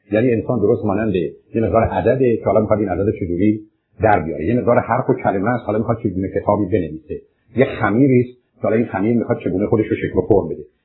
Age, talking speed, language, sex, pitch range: 50-69, 220 wpm, Persian, male, 100-130 Hz